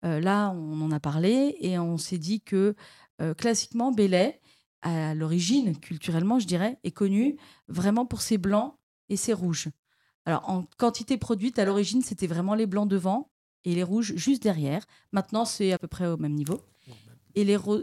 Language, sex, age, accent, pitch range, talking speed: French, female, 40-59, French, 170-215 Hz, 185 wpm